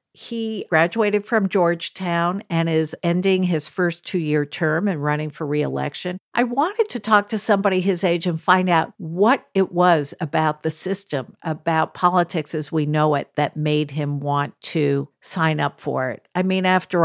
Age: 50-69